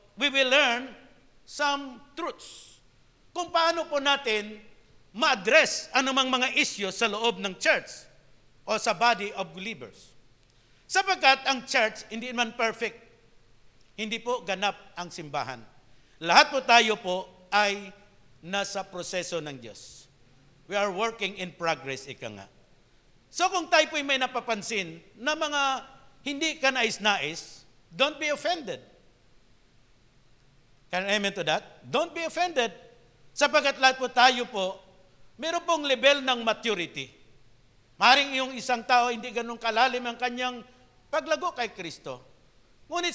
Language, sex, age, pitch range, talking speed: English, male, 50-69, 185-280 Hz, 130 wpm